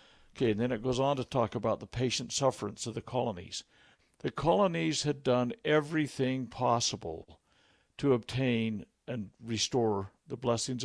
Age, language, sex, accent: 60-79, English, male, American